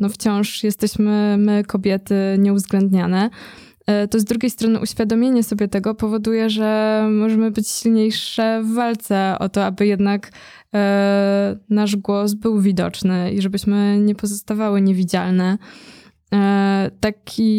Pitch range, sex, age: 190-210 Hz, female, 20-39